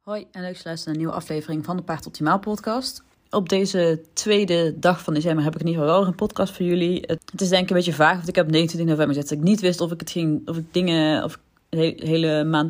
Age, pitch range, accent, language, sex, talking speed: 30-49, 150-180 Hz, Dutch, Dutch, female, 280 wpm